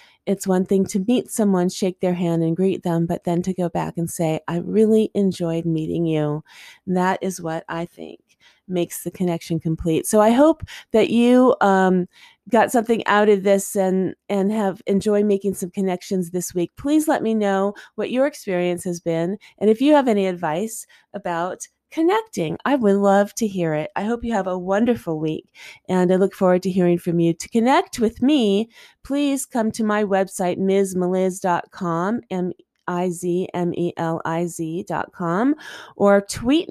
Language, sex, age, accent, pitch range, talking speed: English, female, 30-49, American, 180-230 Hz, 180 wpm